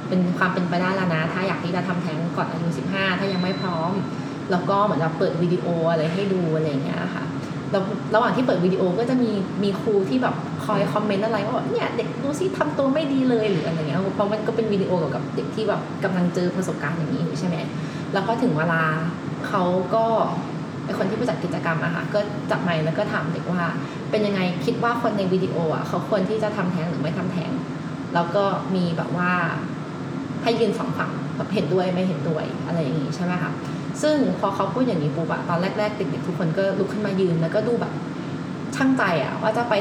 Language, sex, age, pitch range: Thai, female, 20-39, 165-205 Hz